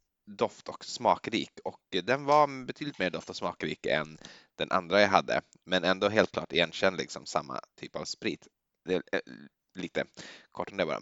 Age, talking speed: 20-39, 185 wpm